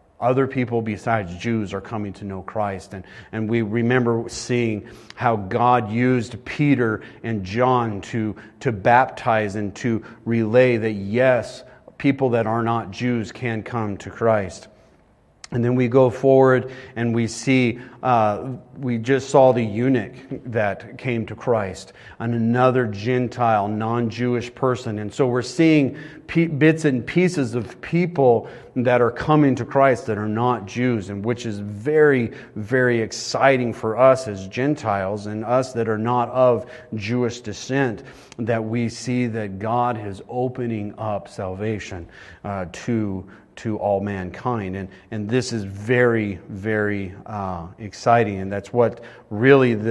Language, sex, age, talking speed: English, male, 40-59, 150 wpm